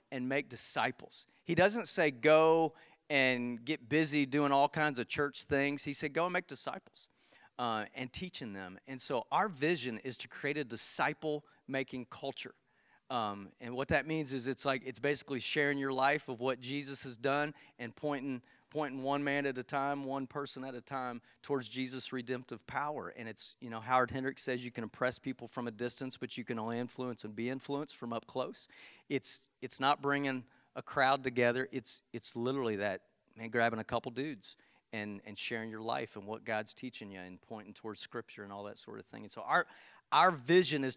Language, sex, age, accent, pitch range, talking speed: English, male, 40-59, American, 125-145 Hz, 205 wpm